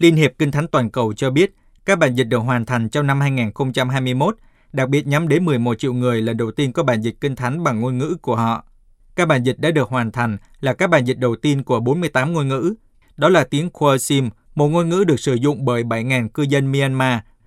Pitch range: 125-150 Hz